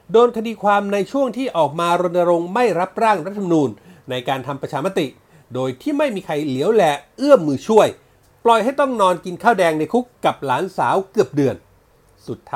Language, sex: Thai, male